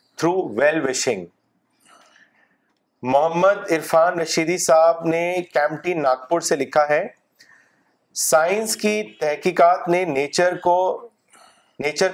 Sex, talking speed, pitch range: male, 80 wpm, 150-180 Hz